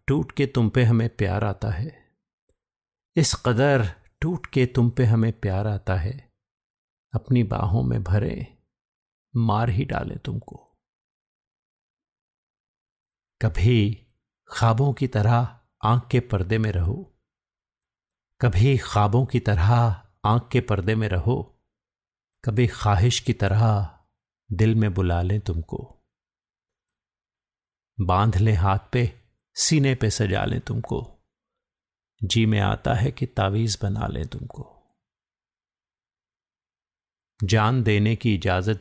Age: 50-69